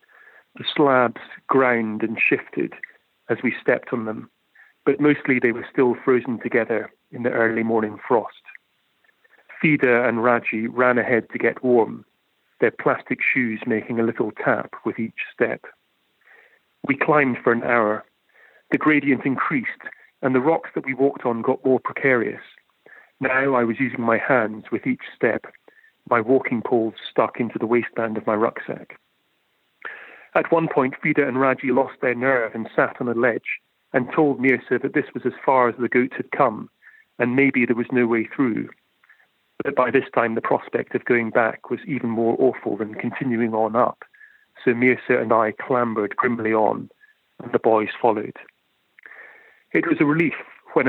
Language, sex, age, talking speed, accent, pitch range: English, male, 40-59, 170 wpm, British, 115-135 Hz